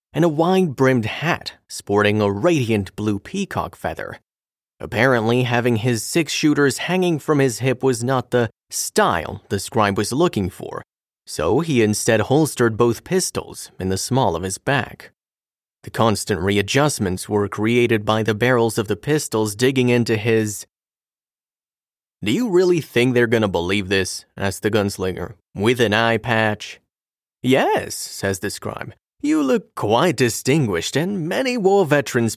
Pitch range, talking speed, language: 105-140 Hz, 150 wpm, English